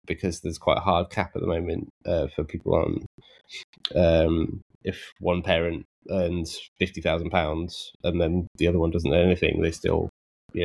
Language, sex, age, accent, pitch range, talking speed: English, male, 20-39, British, 85-100 Hz, 180 wpm